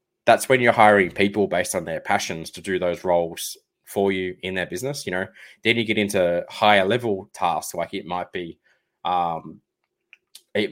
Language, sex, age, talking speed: English, male, 20-39, 185 wpm